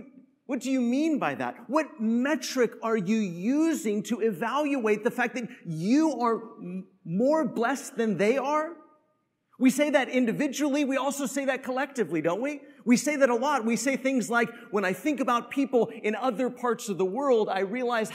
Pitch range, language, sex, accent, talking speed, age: 220-275 Hz, English, male, American, 185 wpm, 30-49